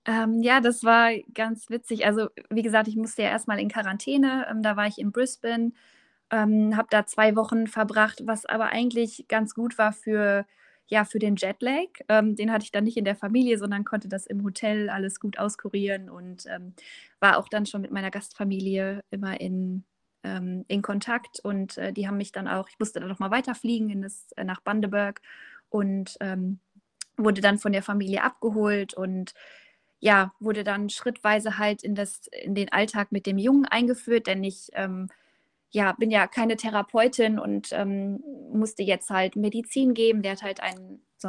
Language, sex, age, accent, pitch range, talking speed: German, female, 20-39, German, 195-225 Hz, 185 wpm